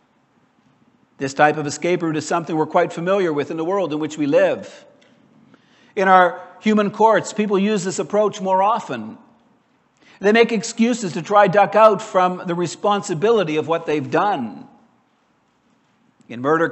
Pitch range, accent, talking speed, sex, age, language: 165-215 Hz, American, 160 wpm, male, 60-79, English